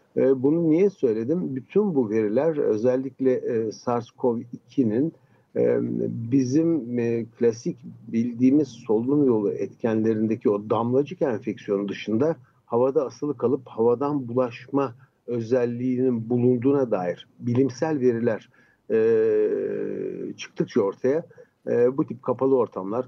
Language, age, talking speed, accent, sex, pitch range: Turkish, 60-79, 90 wpm, native, male, 115-140 Hz